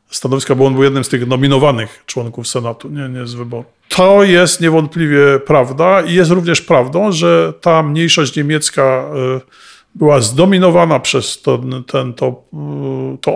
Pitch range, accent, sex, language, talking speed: 130-165 Hz, native, male, Polish, 150 wpm